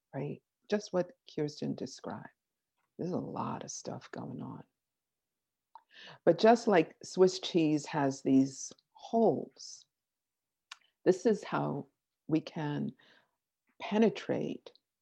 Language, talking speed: English, 105 wpm